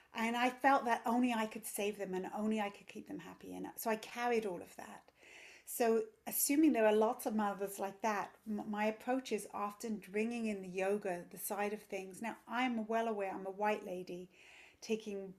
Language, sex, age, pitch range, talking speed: English, female, 40-59, 200-240 Hz, 210 wpm